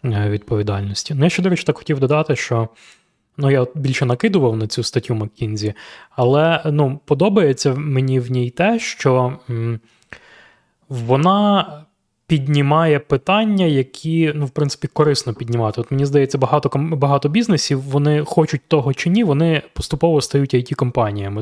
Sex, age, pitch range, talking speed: male, 20-39, 115-150 Hz, 145 wpm